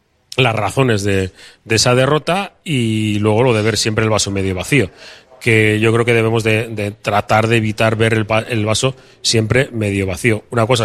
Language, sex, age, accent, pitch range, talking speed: Spanish, male, 30-49, Spanish, 100-120 Hz, 195 wpm